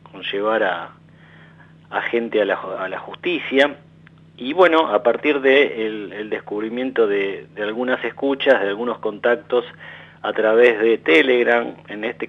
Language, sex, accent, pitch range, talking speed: Italian, male, Argentinian, 115-175 Hz, 130 wpm